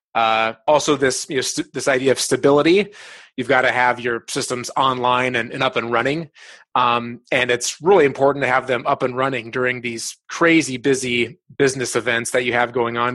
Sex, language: male, English